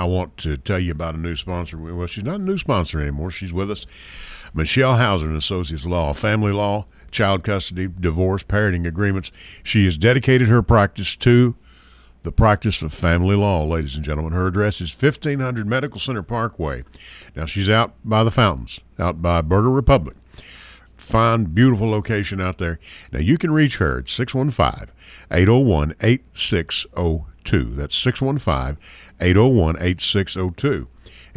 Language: English